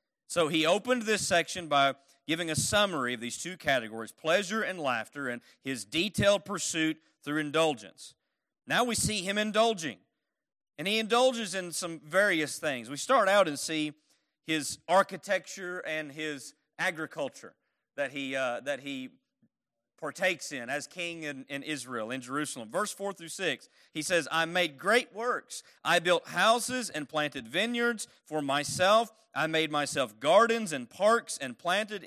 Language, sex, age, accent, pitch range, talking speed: English, male, 40-59, American, 140-200 Hz, 155 wpm